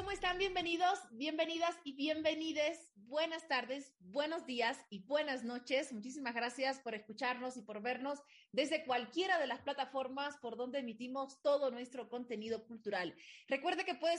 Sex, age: female, 30-49